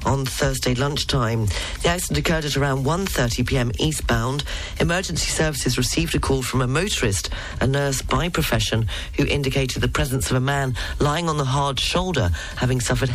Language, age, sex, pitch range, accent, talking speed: English, 40-59, female, 115-140 Hz, British, 165 wpm